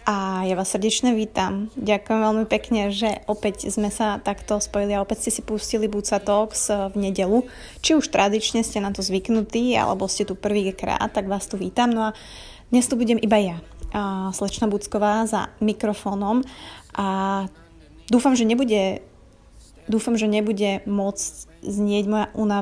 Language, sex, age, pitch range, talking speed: Slovak, female, 20-39, 200-220 Hz, 155 wpm